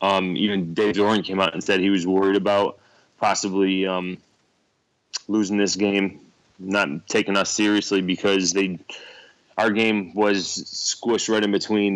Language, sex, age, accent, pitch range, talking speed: English, male, 20-39, American, 90-100 Hz, 150 wpm